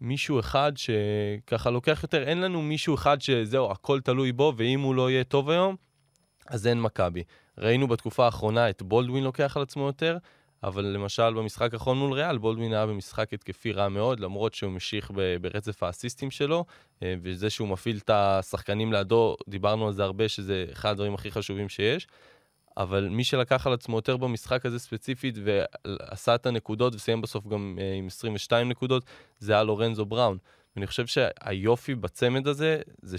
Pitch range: 105-130 Hz